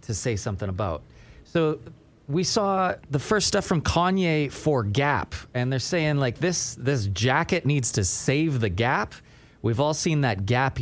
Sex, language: male, English